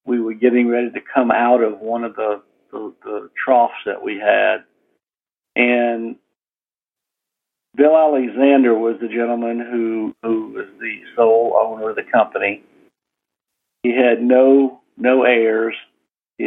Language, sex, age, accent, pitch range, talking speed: English, male, 50-69, American, 110-130 Hz, 140 wpm